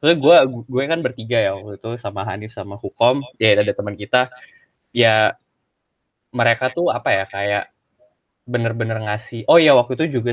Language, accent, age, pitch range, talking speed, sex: Indonesian, native, 20-39, 100-125 Hz, 165 wpm, male